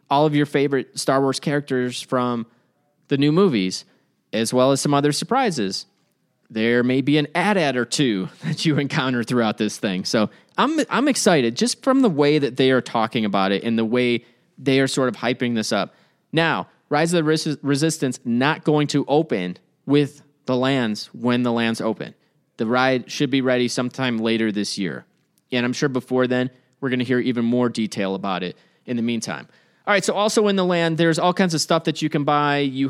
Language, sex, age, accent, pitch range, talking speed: English, male, 30-49, American, 120-150 Hz, 210 wpm